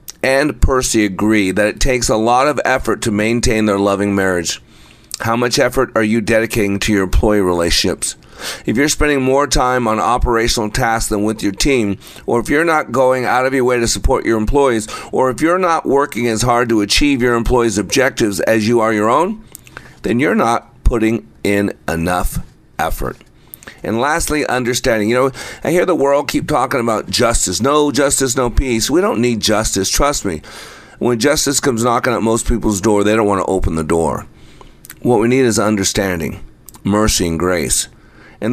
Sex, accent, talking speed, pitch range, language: male, American, 190 wpm, 100-125 Hz, English